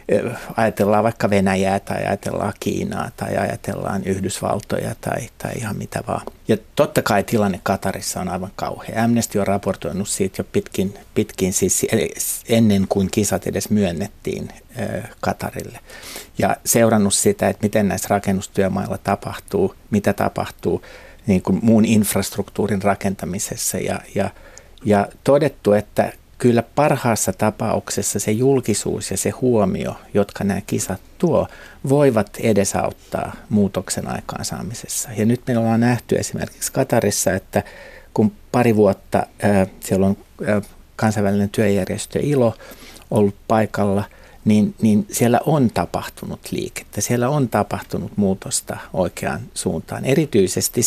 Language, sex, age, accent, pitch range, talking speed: Finnish, male, 60-79, native, 100-115 Hz, 120 wpm